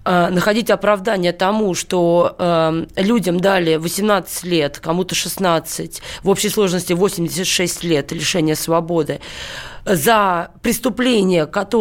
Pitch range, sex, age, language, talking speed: 180-230 Hz, female, 20-39, Russian, 105 wpm